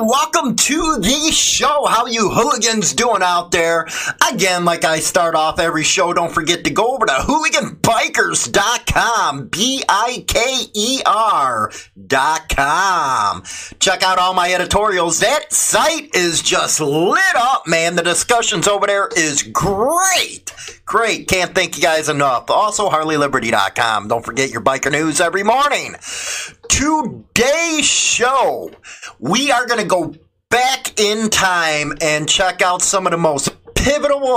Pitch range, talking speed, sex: 155-240 Hz, 135 wpm, male